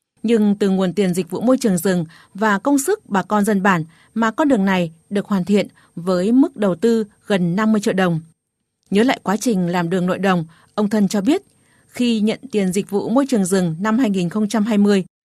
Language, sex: Vietnamese, female